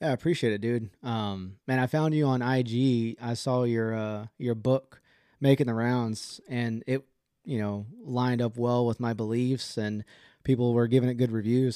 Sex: male